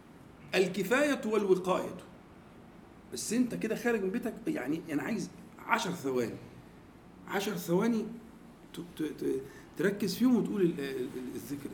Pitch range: 165-220 Hz